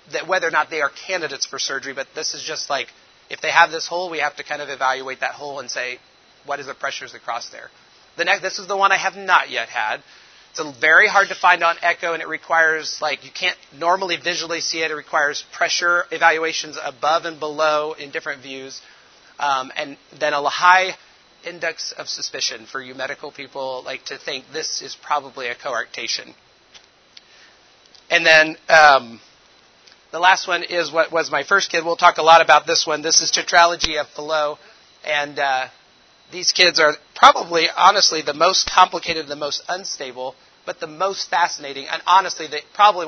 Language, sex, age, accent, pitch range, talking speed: English, male, 30-49, American, 145-175 Hz, 190 wpm